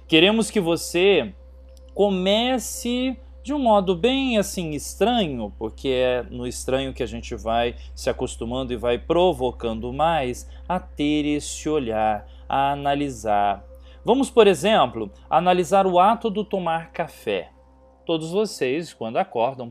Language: Portuguese